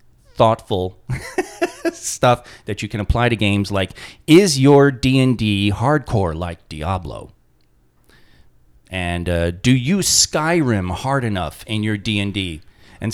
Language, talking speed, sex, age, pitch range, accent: English, 120 wpm, male, 30-49, 90-115 Hz, American